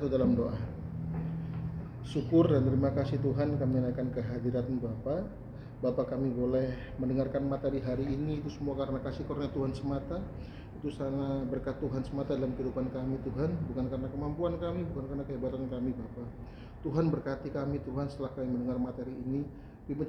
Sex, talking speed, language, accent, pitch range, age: male, 160 wpm, Indonesian, native, 125-145 Hz, 30-49